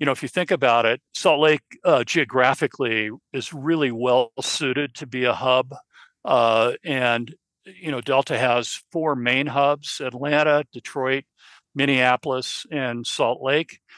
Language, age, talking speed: English, 50-69, 145 wpm